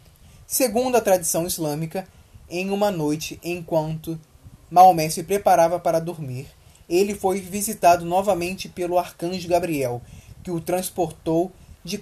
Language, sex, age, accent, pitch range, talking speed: Portuguese, male, 20-39, Brazilian, 155-195 Hz, 120 wpm